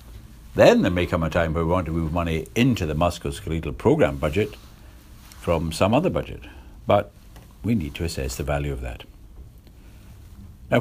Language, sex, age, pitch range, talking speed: English, male, 60-79, 80-105 Hz, 170 wpm